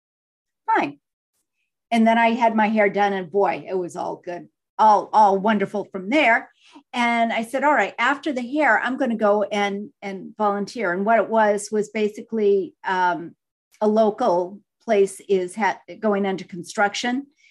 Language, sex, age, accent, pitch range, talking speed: English, female, 50-69, American, 195-250 Hz, 165 wpm